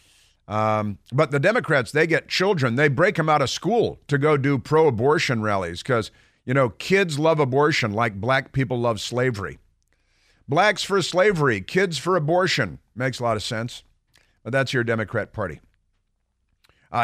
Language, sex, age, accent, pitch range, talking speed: English, male, 50-69, American, 110-150 Hz, 160 wpm